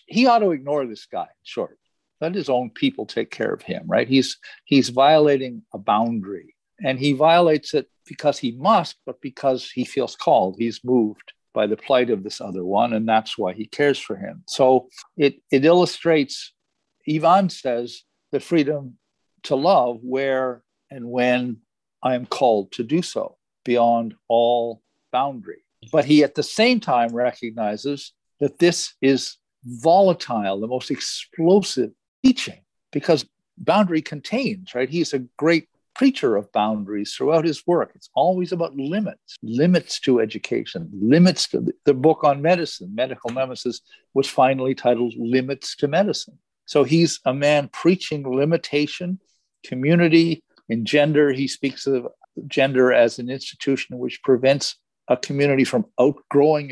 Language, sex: English, male